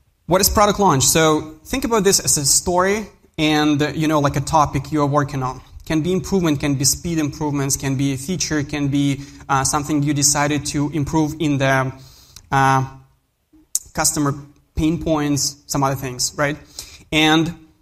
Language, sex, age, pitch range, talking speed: English, male, 20-39, 140-160 Hz, 170 wpm